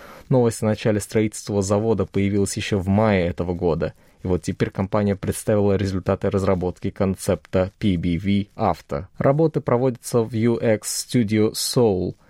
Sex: male